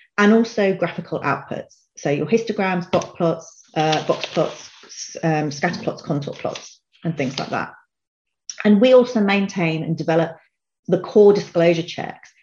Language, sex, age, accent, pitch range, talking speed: English, female, 30-49, British, 160-195 Hz, 150 wpm